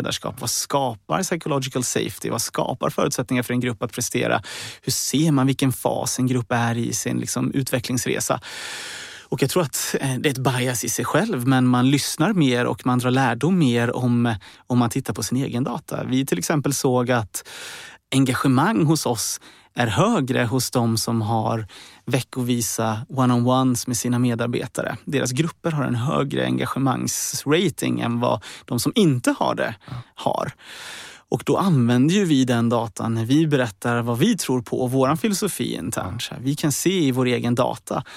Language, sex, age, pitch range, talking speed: Swedish, male, 30-49, 120-135 Hz, 170 wpm